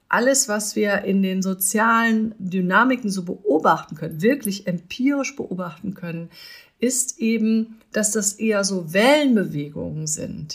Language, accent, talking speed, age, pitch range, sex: German, German, 125 wpm, 50-69, 195-240 Hz, female